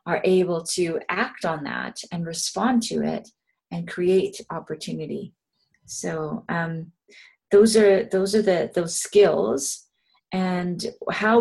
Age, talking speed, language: 30-49, 125 wpm, English